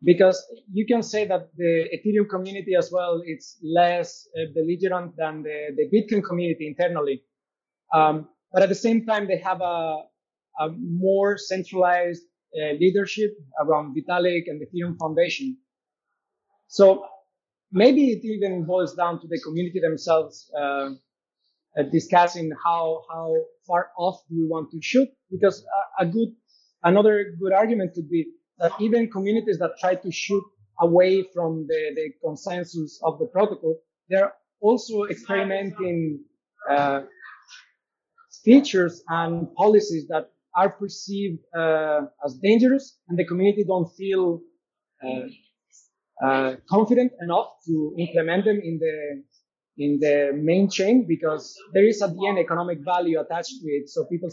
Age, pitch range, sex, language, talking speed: 30-49, 160-200 Hz, male, English, 140 wpm